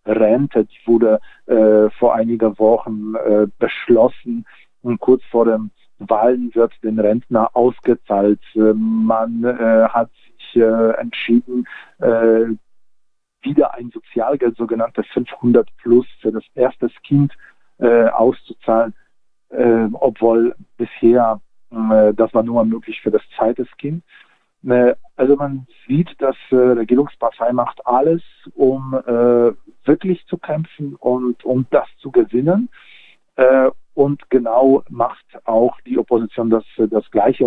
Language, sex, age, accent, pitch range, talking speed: German, male, 40-59, German, 110-125 Hz, 125 wpm